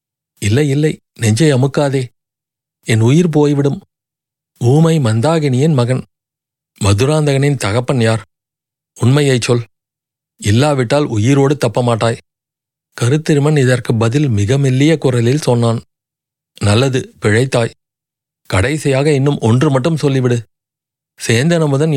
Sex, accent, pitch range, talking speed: male, native, 120-150 Hz, 90 wpm